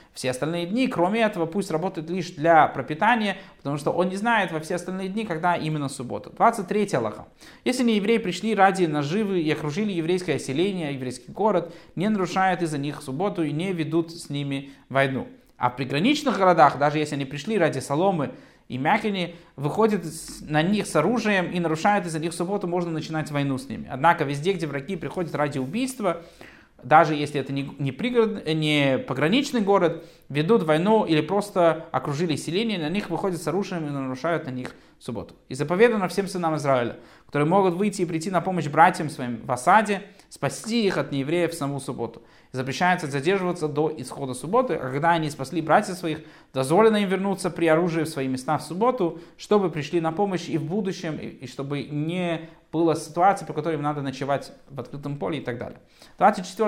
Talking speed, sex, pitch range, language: 185 wpm, male, 145-190 Hz, Russian